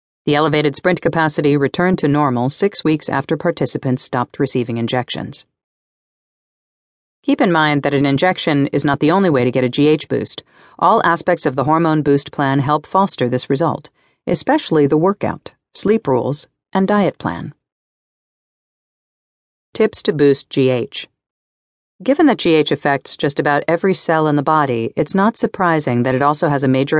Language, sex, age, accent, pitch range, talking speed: English, female, 40-59, American, 135-170 Hz, 160 wpm